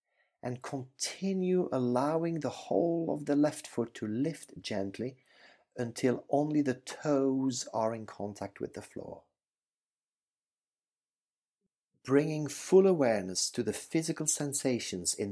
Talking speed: 120 wpm